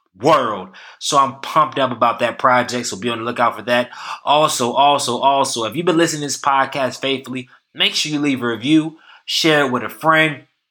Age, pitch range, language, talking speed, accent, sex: 20-39, 125-145 Hz, English, 205 wpm, American, male